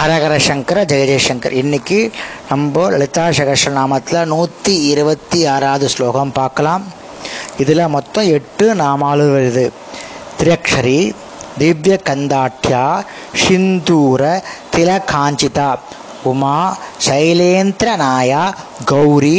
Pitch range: 140-180 Hz